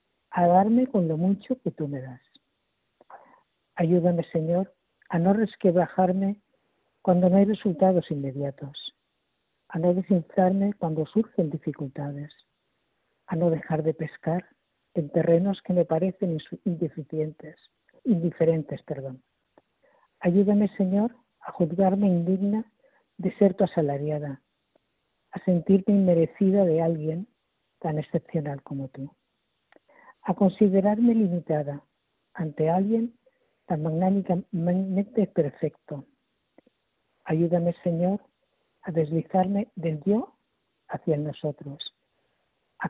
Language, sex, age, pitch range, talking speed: Spanish, female, 50-69, 155-195 Hz, 100 wpm